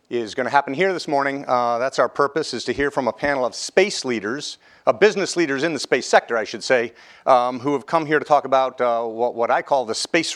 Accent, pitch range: American, 115-135 Hz